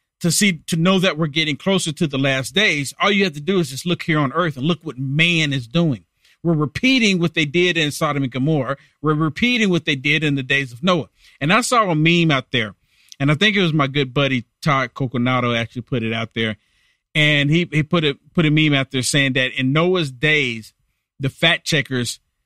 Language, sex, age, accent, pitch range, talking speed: English, male, 40-59, American, 135-175 Hz, 235 wpm